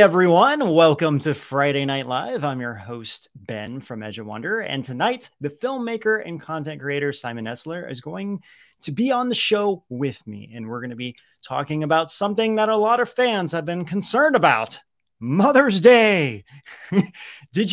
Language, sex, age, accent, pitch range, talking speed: English, male, 30-49, American, 140-220 Hz, 180 wpm